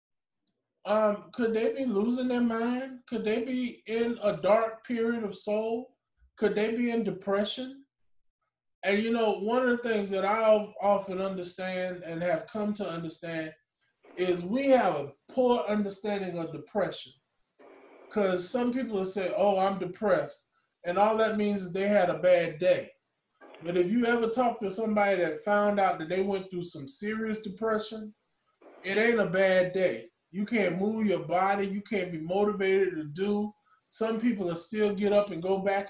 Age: 20-39